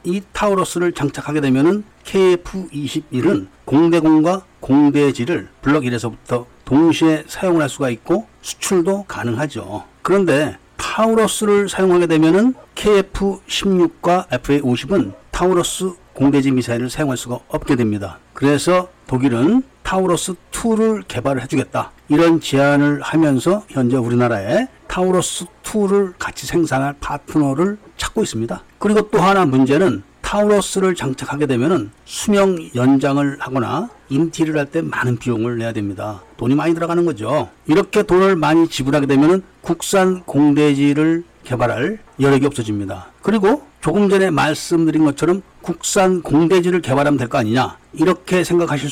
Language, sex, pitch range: Korean, male, 135-185 Hz